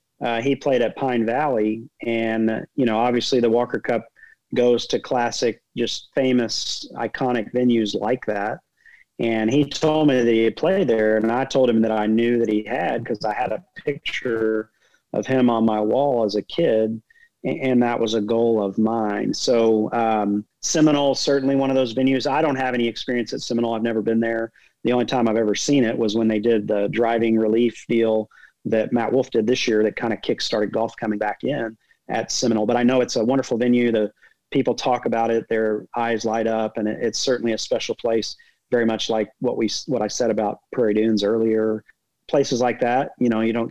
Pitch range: 110-125 Hz